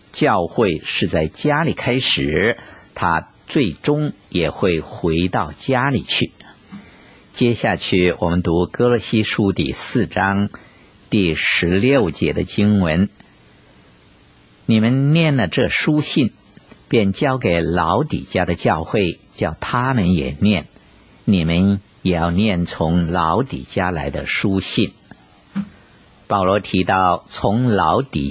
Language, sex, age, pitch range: Chinese, male, 50-69, 85-120 Hz